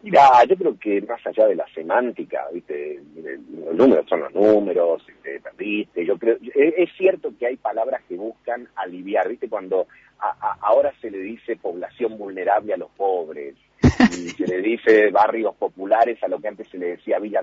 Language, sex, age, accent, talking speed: Spanish, male, 40-59, Argentinian, 185 wpm